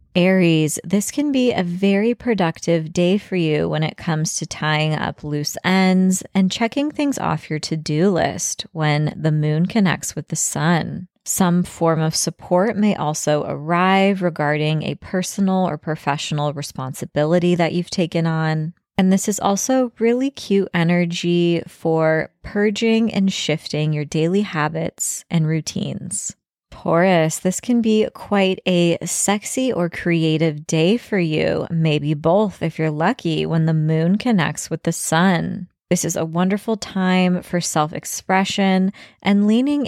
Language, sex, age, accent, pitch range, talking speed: English, female, 20-39, American, 160-200 Hz, 145 wpm